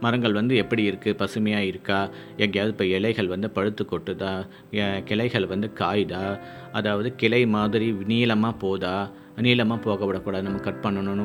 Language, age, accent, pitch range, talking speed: Tamil, 50-69, native, 100-130 Hz, 140 wpm